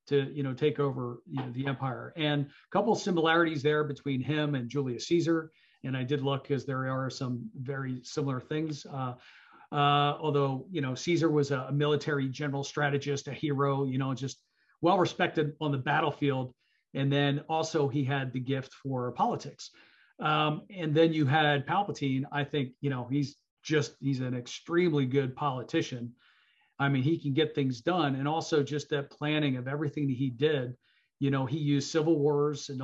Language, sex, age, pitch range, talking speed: English, male, 40-59, 135-150 Hz, 190 wpm